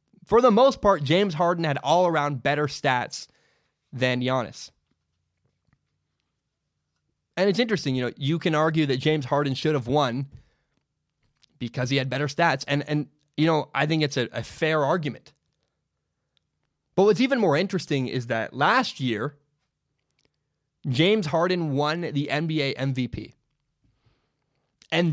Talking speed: 140 wpm